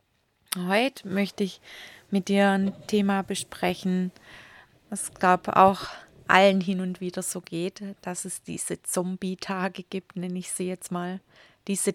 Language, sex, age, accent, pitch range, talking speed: German, female, 30-49, German, 180-200 Hz, 140 wpm